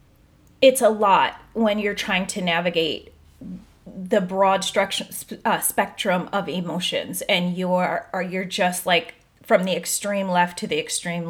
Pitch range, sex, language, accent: 190-245 Hz, female, English, American